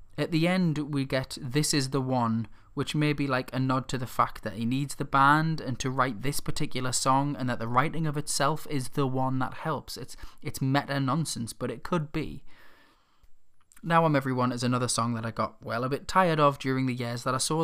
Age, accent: 20-39, British